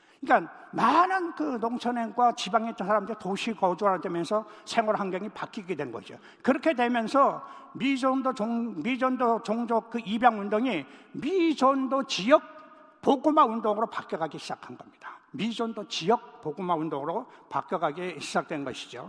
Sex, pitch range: male, 205-265 Hz